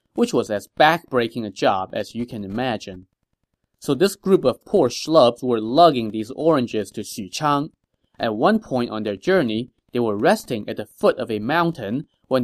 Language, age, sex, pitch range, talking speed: English, 30-49, male, 110-145 Hz, 185 wpm